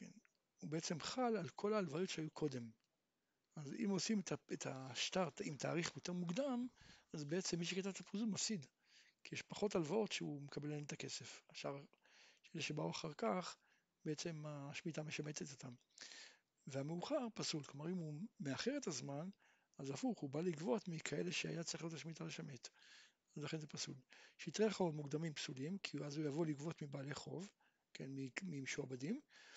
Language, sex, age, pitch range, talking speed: Hebrew, male, 60-79, 150-215 Hz, 155 wpm